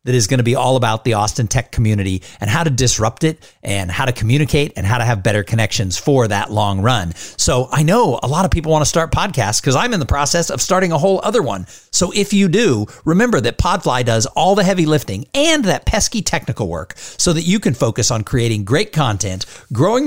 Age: 50-69